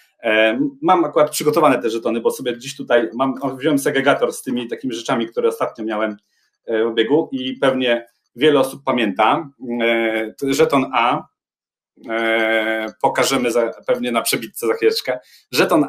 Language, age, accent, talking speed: Polish, 30-49, native, 130 wpm